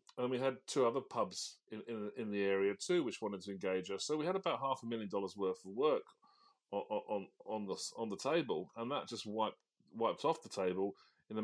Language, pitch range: English, 100-120 Hz